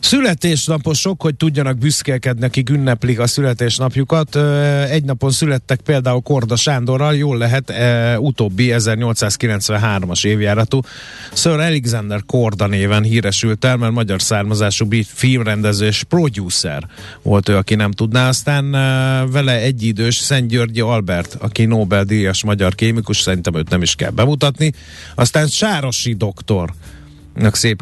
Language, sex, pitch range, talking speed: Hungarian, male, 95-125 Hz, 125 wpm